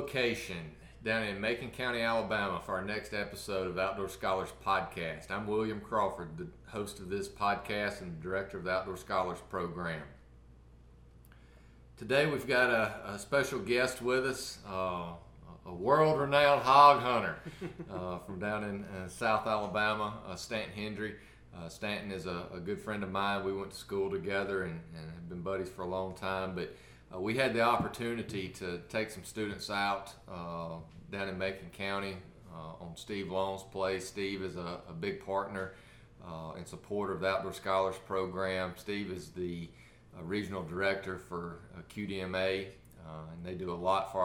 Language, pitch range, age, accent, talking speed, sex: English, 90-105 Hz, 40-59, American, 175 wpm, male